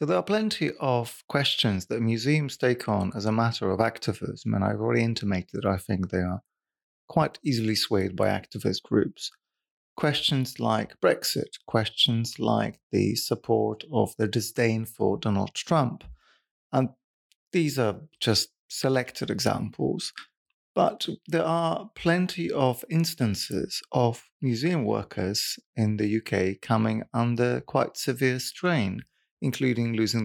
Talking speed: 135 wpm